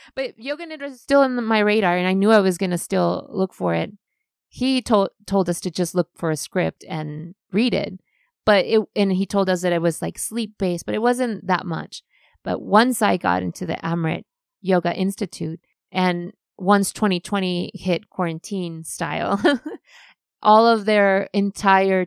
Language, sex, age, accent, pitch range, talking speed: English, female, 30-49, American, 170-210 Hz, 185 wpm